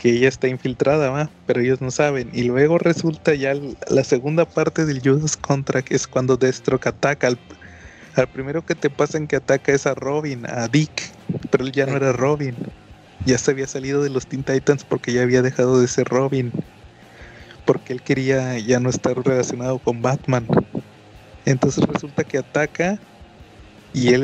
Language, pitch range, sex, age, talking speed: Spanish, 125-145 Hz, male, 30-49, 185 wpm